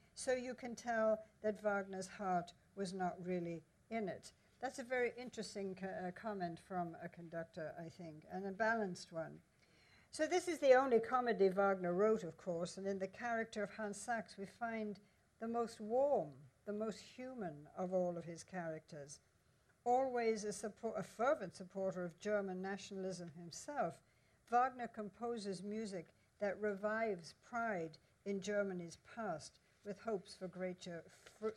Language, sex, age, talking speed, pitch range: English, female, 60-79, 155 wpm, 180-225 Hz